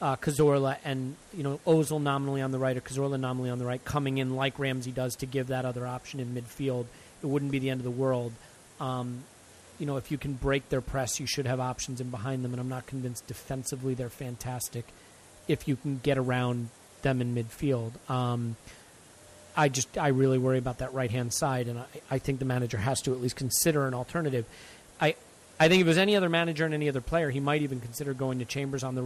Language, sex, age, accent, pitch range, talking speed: English, male, 40-59, American, 125-140 Hz, 235 wpm